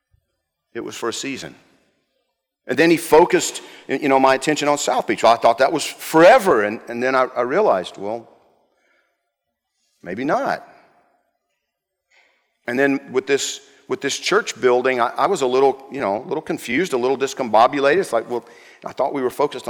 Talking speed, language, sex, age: 180 wpm, English, male, 50-69